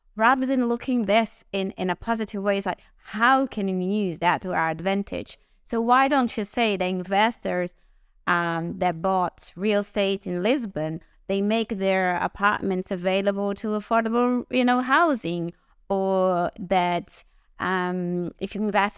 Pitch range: 185-220 Hz